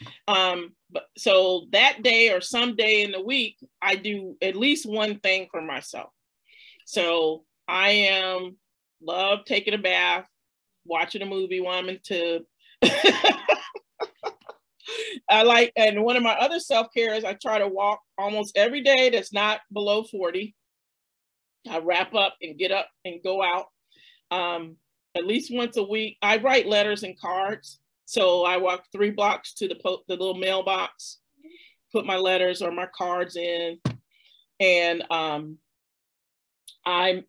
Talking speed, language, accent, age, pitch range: 150 wpm, English, American, 40-59, 175-210 Hz